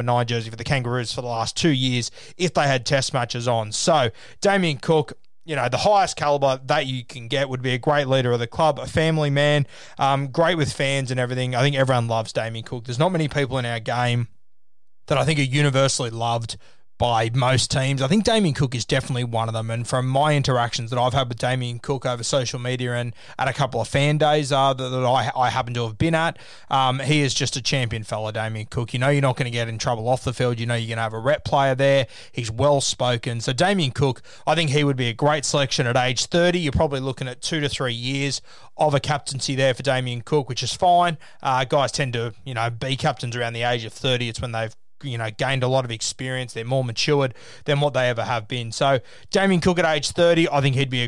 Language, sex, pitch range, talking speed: English, male, 120-145 Hz, 255 wpm